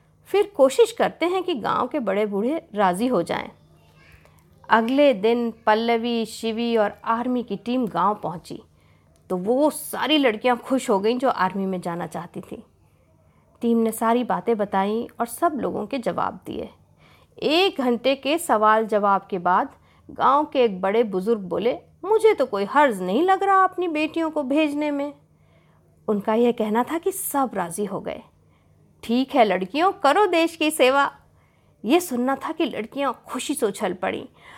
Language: Hindi